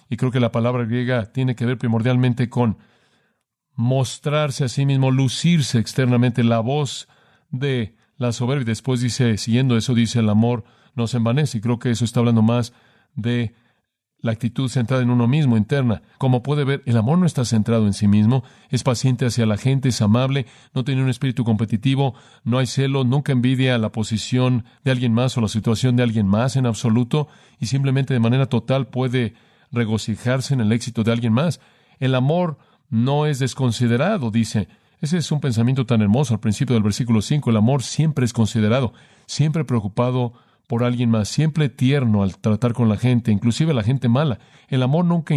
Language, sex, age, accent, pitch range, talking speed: Spanish, male, 40-59, Mexican, 115-135 Hz, 190 wpm